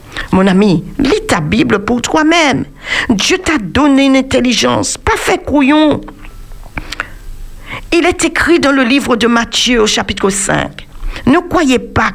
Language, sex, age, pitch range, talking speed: French, female, 50-69, 215-305 Hz, 140 wpm